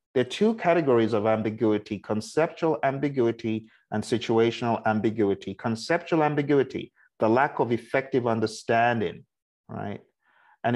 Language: English